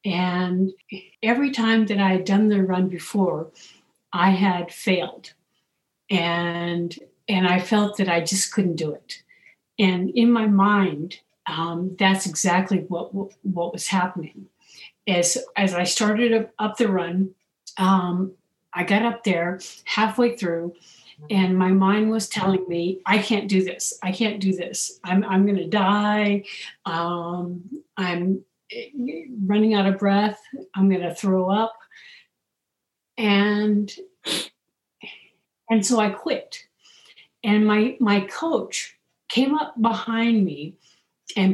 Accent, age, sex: American, 50-69, female